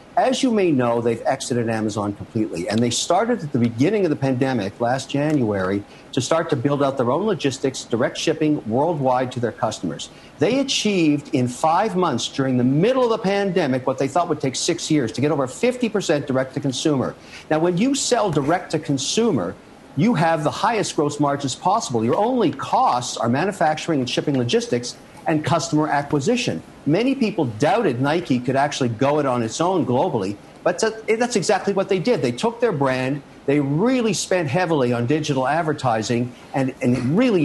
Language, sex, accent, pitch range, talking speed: English, male, American, 130-175 Hz, 185 wpm